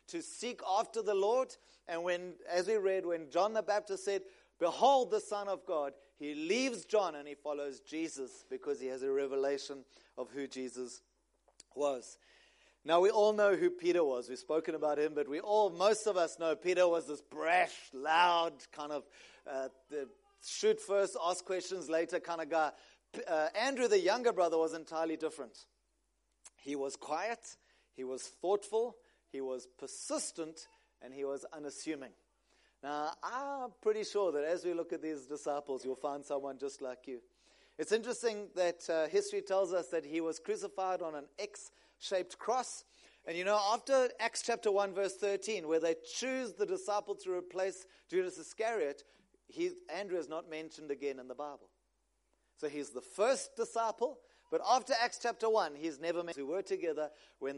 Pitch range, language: 150-220 Hz, English